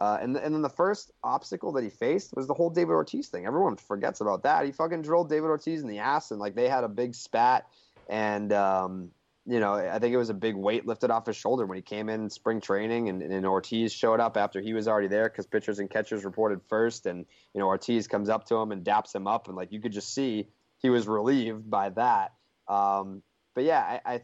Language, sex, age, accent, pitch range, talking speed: English, male, 20-39, American, 100-125 Hz, 250 wpm